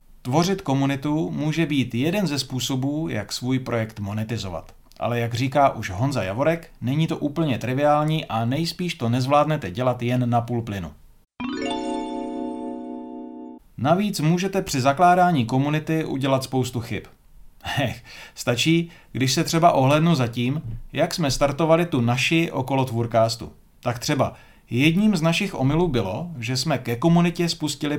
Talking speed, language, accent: 135 wpm, Czech, native